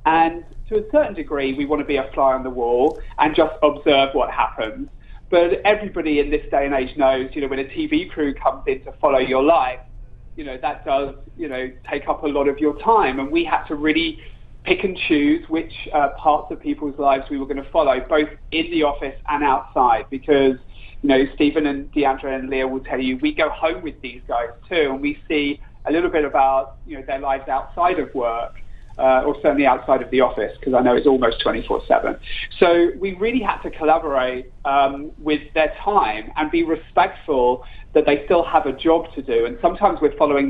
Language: English